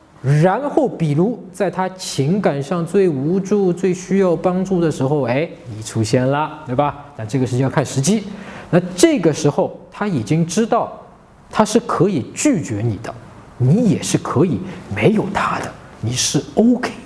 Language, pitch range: Chinese, 135-205 Hz